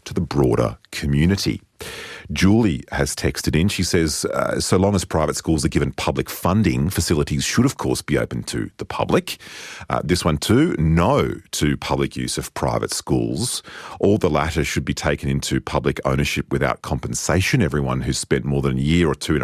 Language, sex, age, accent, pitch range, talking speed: English, male, 40-59, Australian, 70-90 Hz, 190 wpm